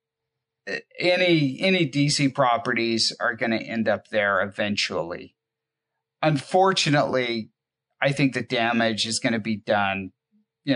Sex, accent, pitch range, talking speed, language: male, American, 110-155 Hz, 125 wpm, English